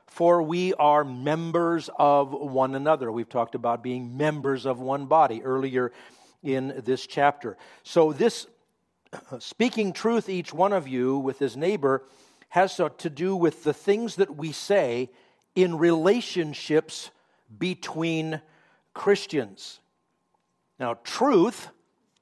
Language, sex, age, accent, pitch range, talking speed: English, male, 50-69, American, 135-170 Hz, 120 wpm